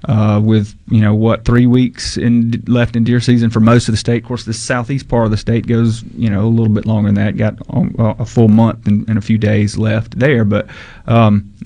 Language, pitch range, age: English, 110-125 Hz, 30-49